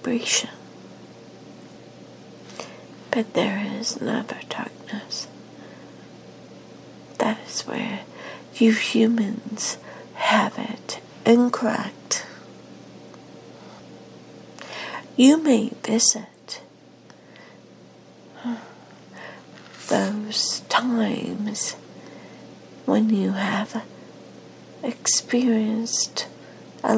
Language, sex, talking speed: English, female, 55 wpm